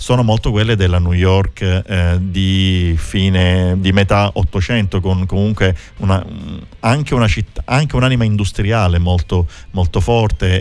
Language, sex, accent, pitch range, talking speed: Italian, male, native, 90-105 Hz, 135 wpm